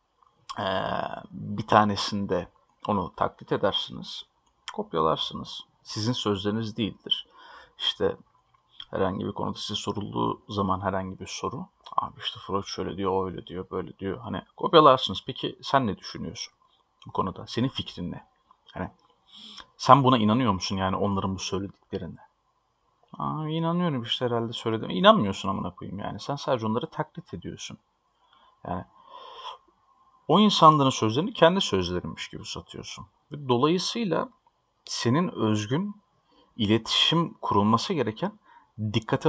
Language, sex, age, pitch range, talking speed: Turkish, male, 40-59, 105-155 Hz, 120 wpm